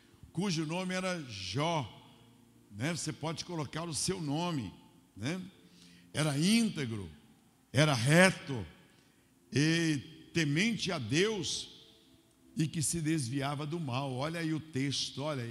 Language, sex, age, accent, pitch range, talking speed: Portuguese, male, 60-79, Brazilian, 130-175 Hz, 120 wpm